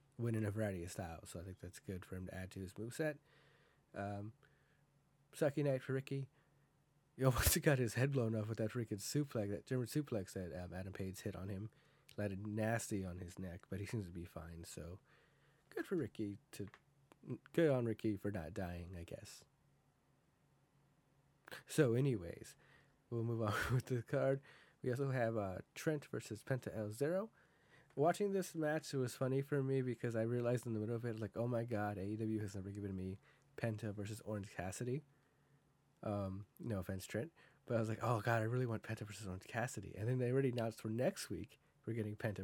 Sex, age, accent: male, 30-49, American